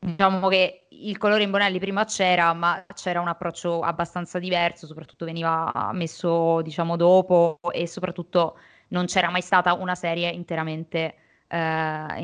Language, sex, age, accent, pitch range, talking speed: Italian, female, 20-39, native, 170-190 Hz, 140 wpm